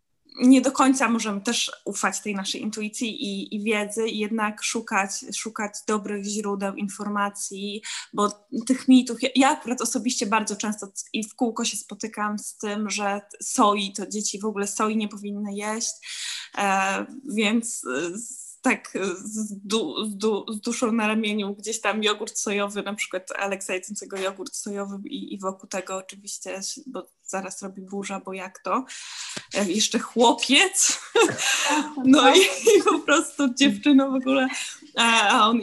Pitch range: 200-255 Hz